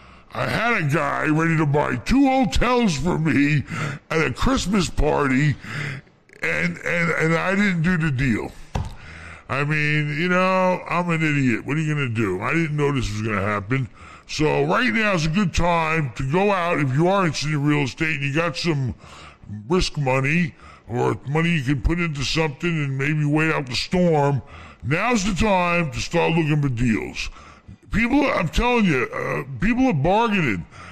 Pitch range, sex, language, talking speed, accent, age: 145-200 Hz, female, English, 185 wpm, American, 60-79